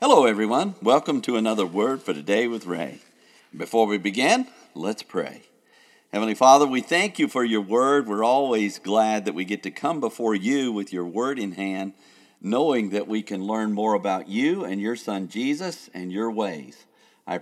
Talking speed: 185 wpm